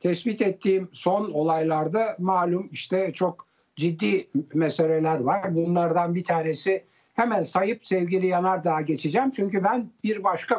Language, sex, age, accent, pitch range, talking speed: Turkish, male, 60-79, native, 160-220 Hz, 130 wpm